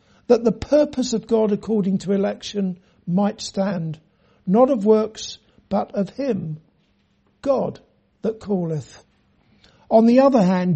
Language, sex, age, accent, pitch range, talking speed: English, male, 60-79, British, 195-235 Hz, 130 wpm